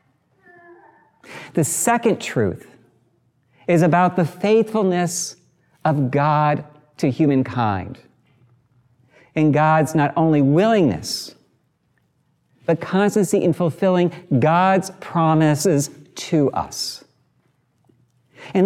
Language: English